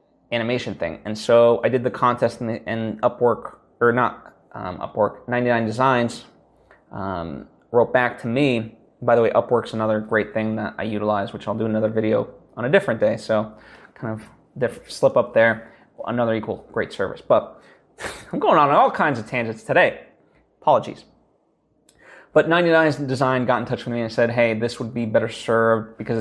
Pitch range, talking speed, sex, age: 110-130 Hz, 180 wpm, male, 20-39